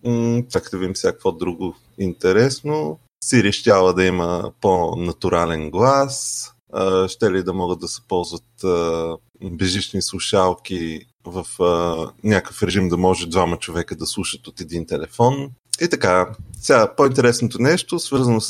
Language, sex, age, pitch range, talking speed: Bulgarian, male, 30-49, 95-125 Hz, 125 wpm